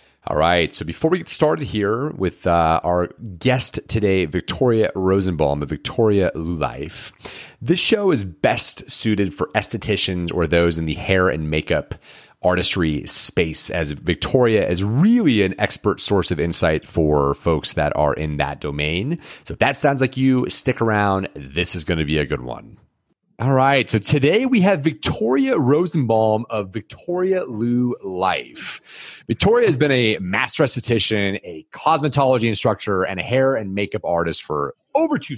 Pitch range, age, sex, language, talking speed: 90-130 Hz, 30-49, male, English, 165 wpm